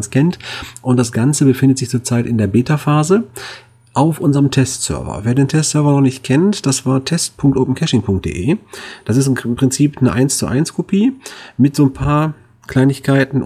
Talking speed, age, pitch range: 155 wpm, 40-59, 115-140 Hz